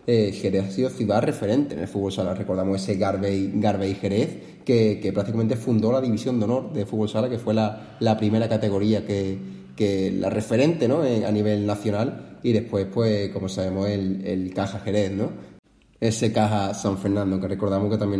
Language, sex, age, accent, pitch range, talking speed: Spanish, male, 20-39, Spanish, 95-115 Hz, 190 wpm